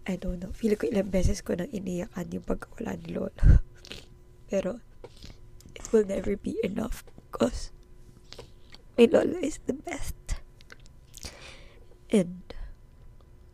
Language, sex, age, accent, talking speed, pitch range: Filipino, female, 20-39, native, 125 wpm, 165-210 Hz